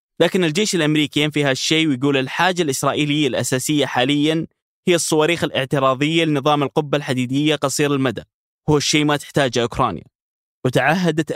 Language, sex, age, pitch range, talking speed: Arabic, male, 20-39, 130-150 Hz, 125 wpm